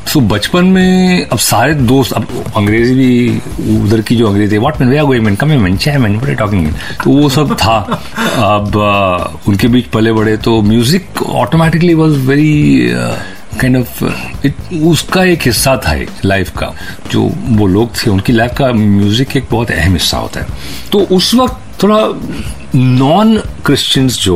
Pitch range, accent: 95-140 Hz, native